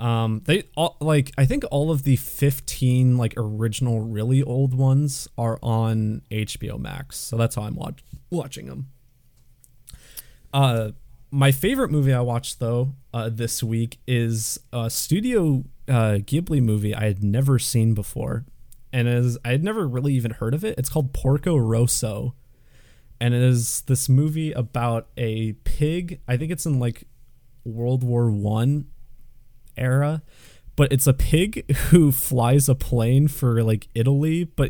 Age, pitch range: 20-39, 115-135 Hz